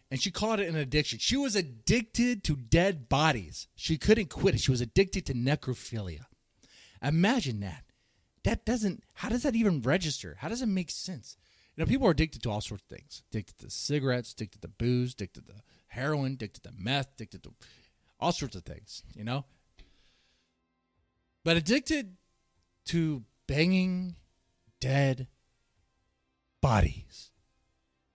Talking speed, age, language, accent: 150 wpm, 30-49, English, American